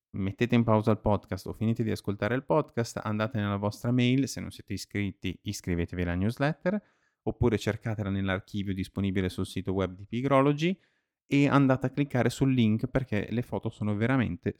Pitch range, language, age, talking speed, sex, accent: 95-120 Hz, Italian, 30-49, 175 wpm, male, native